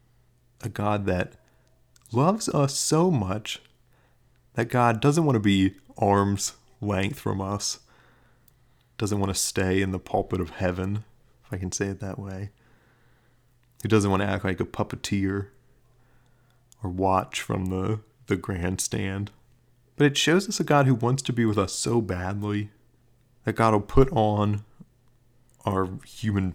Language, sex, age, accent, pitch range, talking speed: English, male, 30-49, American, 100-125 Hz, 155 wpm